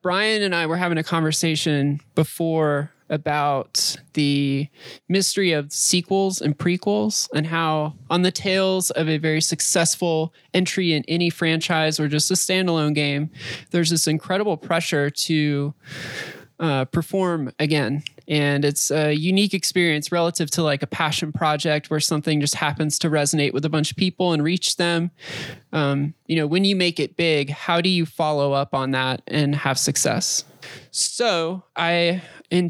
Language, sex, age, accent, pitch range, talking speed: English, male, 20-39, American, 145-170 Hz, 160 wpm